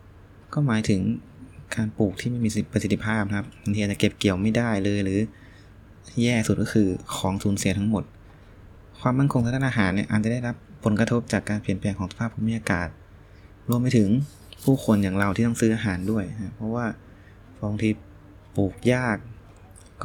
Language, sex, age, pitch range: Thai, male, 20-39, 100-115 Hz